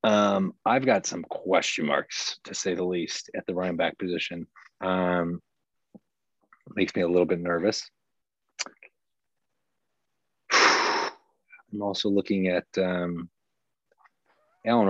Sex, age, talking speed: male, 30-49, 115 wpm